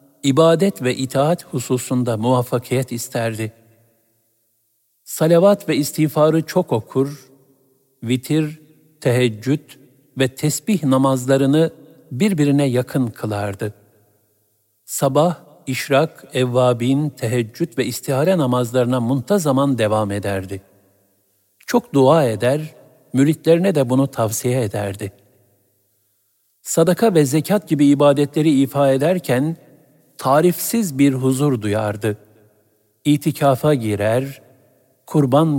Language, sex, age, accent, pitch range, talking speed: Turkish, male, 60-79, native, 110-145 Hz, 85 wpm